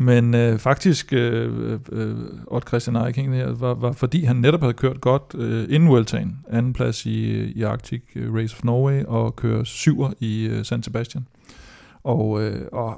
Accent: native